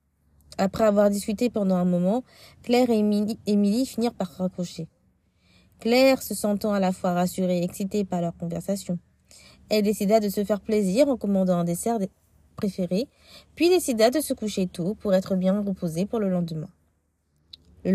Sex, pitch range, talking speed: female, 180-230 Hz, 165 wpm